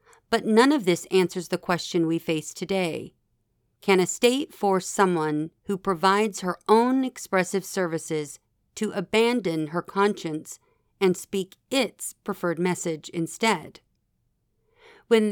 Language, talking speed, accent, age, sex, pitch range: English, 125 wpm, American, 40-59, female, 170-220 Hz